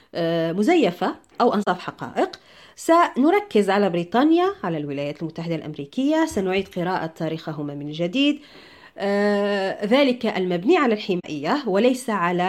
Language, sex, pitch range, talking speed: Arabic, female, 185-280 Hz, 105 wpm